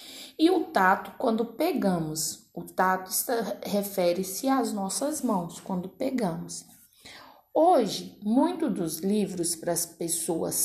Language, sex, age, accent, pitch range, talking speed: Portuguese, female, 20-39, Brazilian, 185-270 Hz, 120 wpm